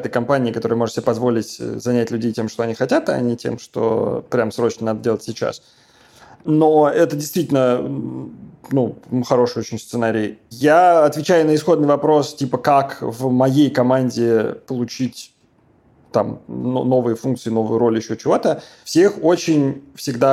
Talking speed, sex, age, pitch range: 140 wpm, male, 20-39, 115-150 Hz